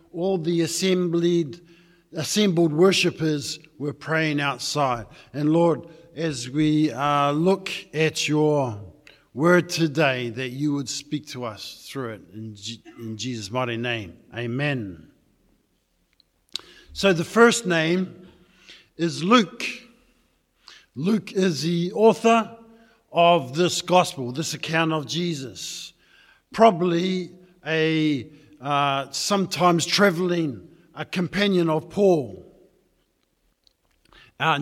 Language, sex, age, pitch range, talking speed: English, male, 50-69, 150-180 Hz, 95 wpm